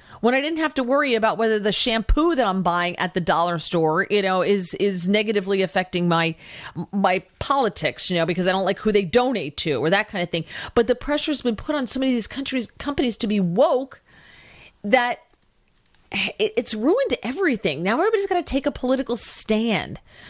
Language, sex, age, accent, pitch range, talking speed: English, female, 40-59, American, 200-270 Hz, 205 wpm